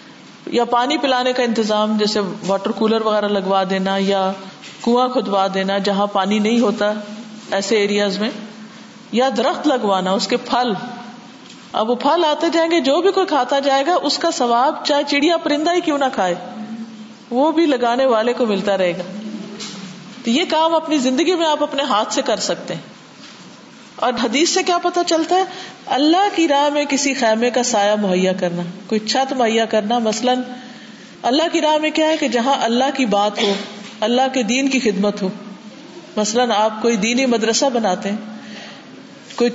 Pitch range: 210-275 Hz